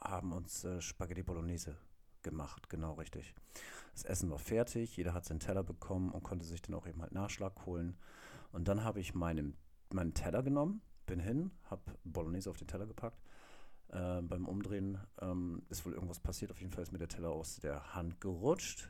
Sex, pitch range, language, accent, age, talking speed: male, 80-95 Hz, German, German, 50-69, 195 wpm